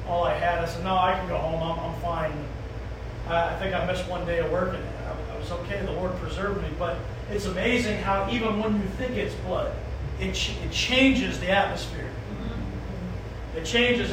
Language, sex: English, male